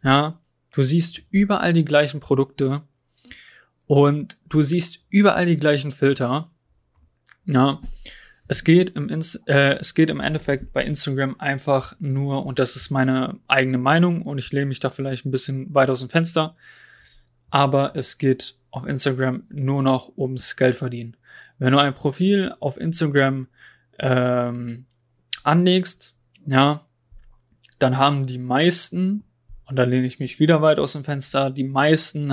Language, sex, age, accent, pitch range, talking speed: German, male, 20-39, German, 130-155 Hz, 150 wpm